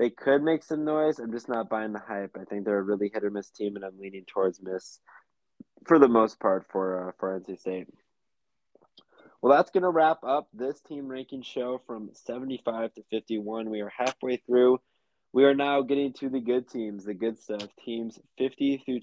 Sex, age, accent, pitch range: male, 20-39, American, 100-130 Hz